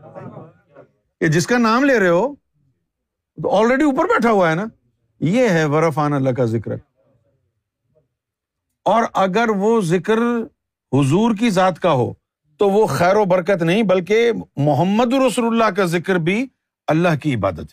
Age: 50-69